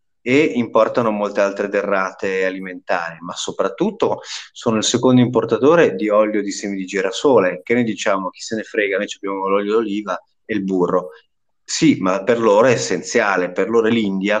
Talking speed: 170 wpm